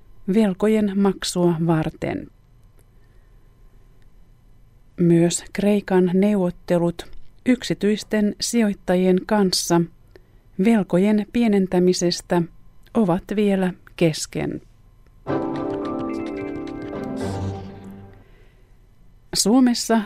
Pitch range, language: 145-200 Hz, Finnish